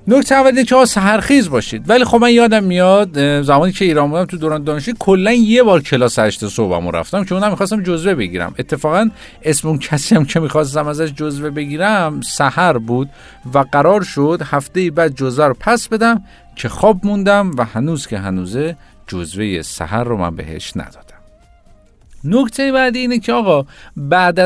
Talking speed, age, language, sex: 170 wpm, 50-69, Persian, male